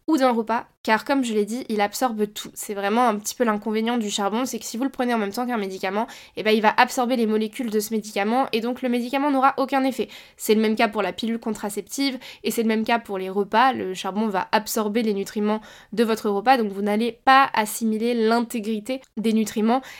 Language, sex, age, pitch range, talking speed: French, female, 20-39, 210-245 Hz, 245 wpm